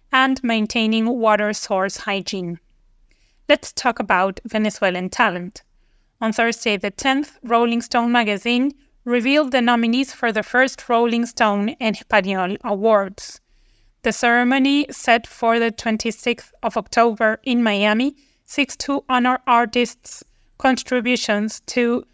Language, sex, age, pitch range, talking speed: English, female, 20-39, 215-250 Hz, 120 wpm